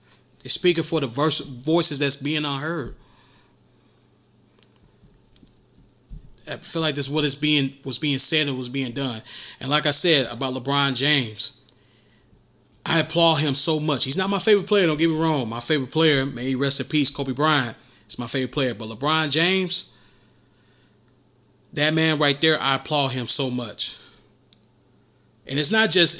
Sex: male